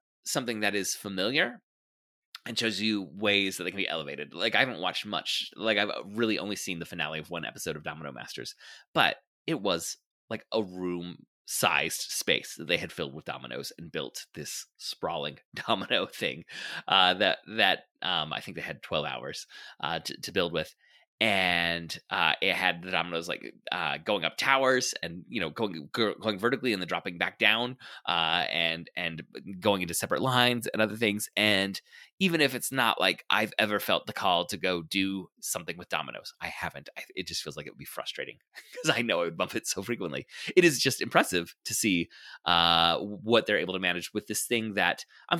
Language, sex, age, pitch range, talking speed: English, male, 30-49, 85-115 Hz, 200 wpm